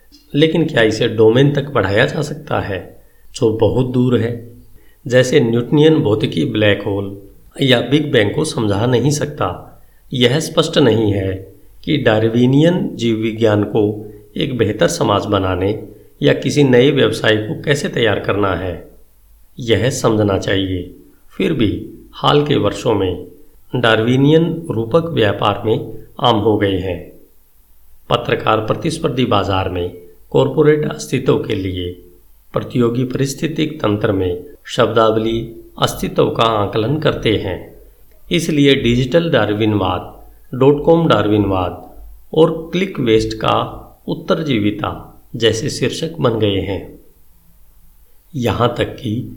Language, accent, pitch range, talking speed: Hindi, native, 100-145 Hz, 125 wpm